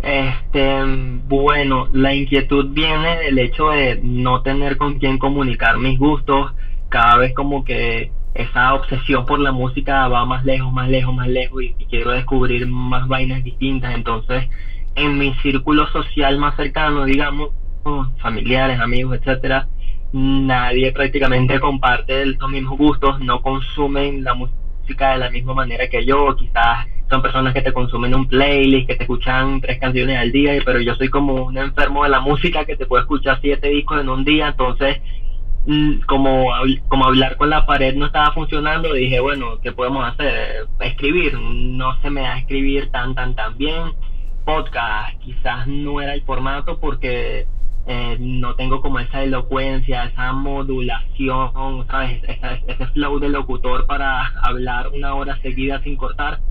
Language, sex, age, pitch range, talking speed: Spanish, male, 20-39, 125-140 Hz, 160 wpm